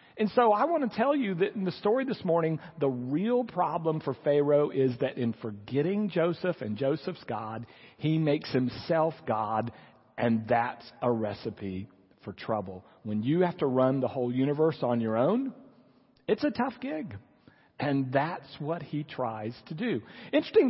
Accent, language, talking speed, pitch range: American, English, 170 wpm, 145-195 Hz